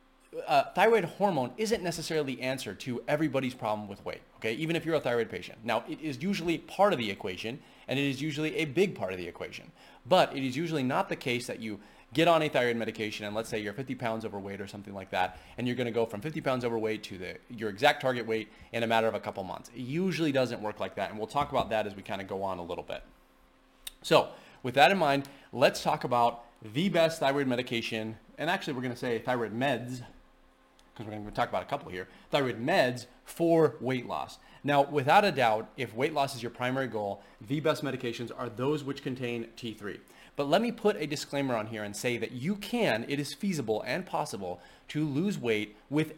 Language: English